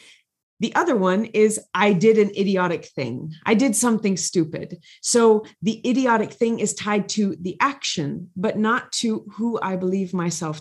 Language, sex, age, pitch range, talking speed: English, female, 30-49, 175-225 Hz, 165 wpm